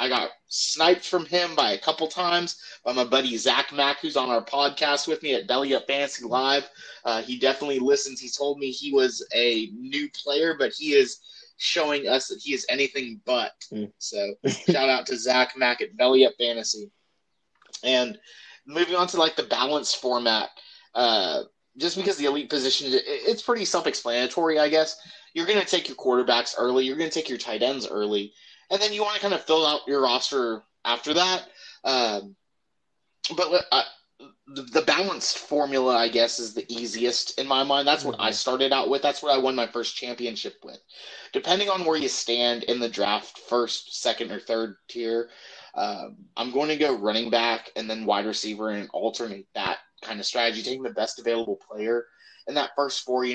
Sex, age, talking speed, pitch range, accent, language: male, 30-49, 195 wpm, 115-160 Hz, American, English